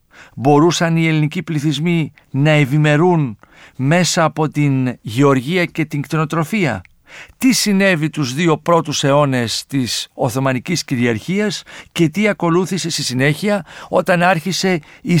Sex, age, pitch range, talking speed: male, 50-69, 135-175 Hz, 120 wpm